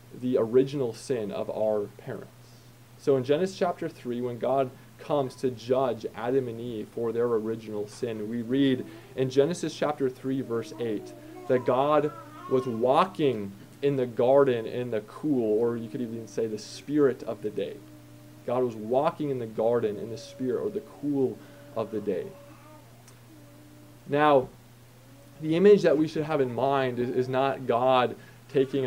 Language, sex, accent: English, male, American